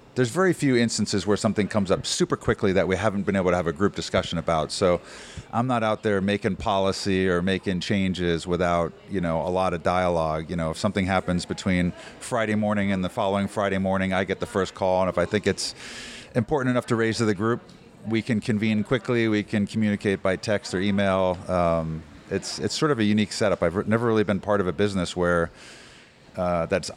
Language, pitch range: English, 90-110 Hz